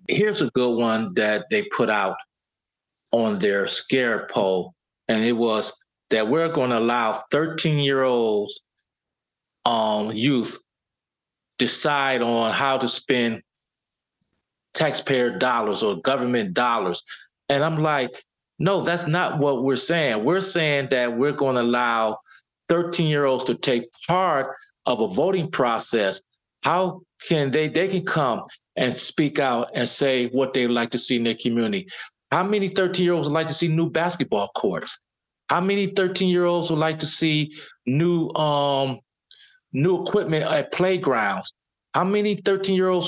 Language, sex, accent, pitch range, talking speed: English, male, American, 125-175 Hz, 140 wpm